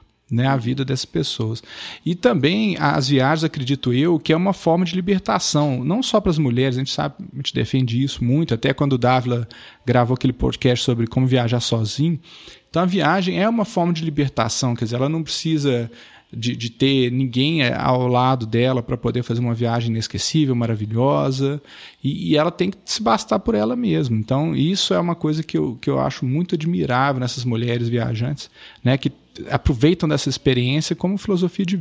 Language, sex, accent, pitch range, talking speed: Portuguese, male, Brazilian, 120-155 Hz, 190 wpm